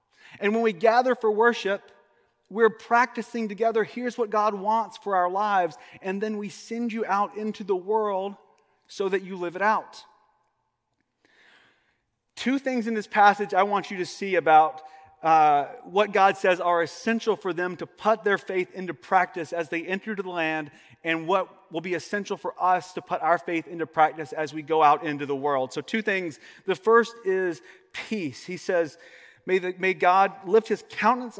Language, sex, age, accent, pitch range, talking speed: English, male, 30-49, American, 180-225 Hz, 185 wpm